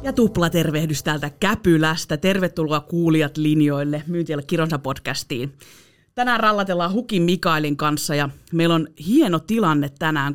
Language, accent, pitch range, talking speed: Finnish, native, 150-205 Hz, 120 wpm